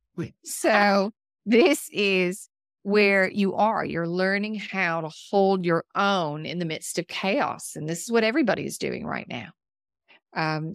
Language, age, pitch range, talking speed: English, 40-59, 165-190 Hz, 155 wpm